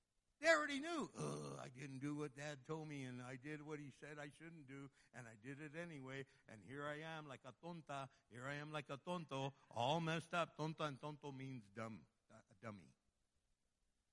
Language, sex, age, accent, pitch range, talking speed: English, male, 60-79, American, 140-185 Hz, 205 wpm